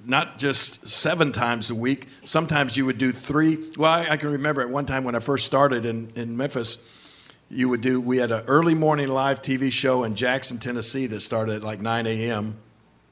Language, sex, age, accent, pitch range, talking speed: English, male, 50-69, American, 115-135 Hz, 210 wpm